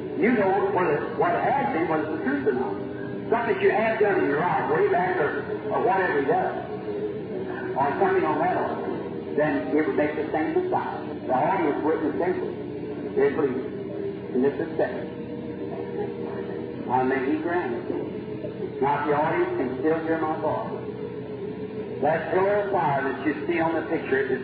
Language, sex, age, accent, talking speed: English, male, 50-69, American, 180 wpm